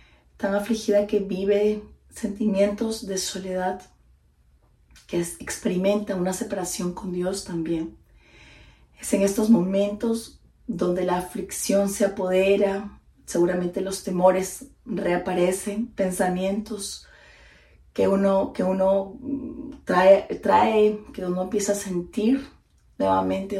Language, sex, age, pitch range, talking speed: Spanish, female, 30-49, 180-210 Hz, 100 wpm